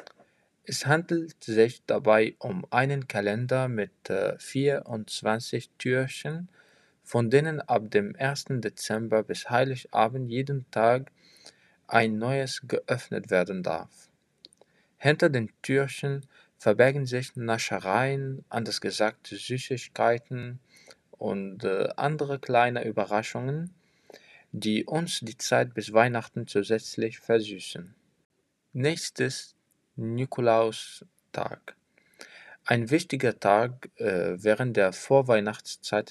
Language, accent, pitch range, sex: German, German, 110-135 Hz, male